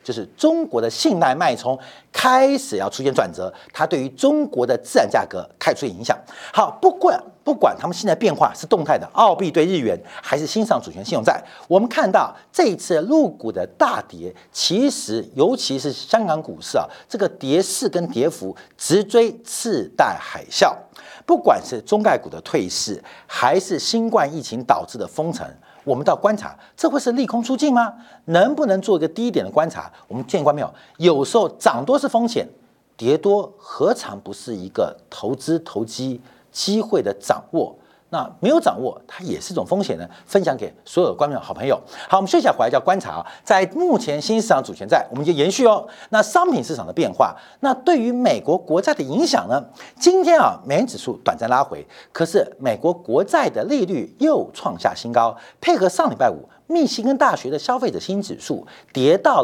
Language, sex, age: Chinese, male, 50-69